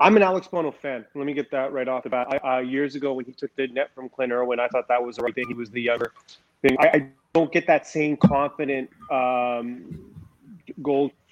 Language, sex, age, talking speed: English, male, 30-49, 245 wpm